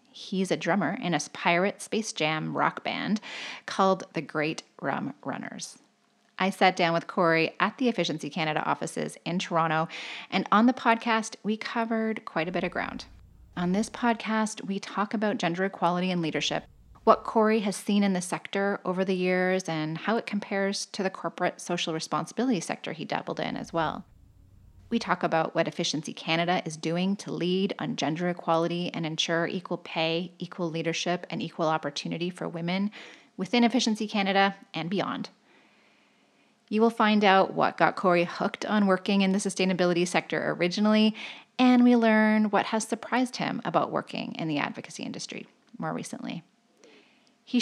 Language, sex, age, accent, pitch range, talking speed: English, female, 30-49, American, 170-215 Hz, 170 wpm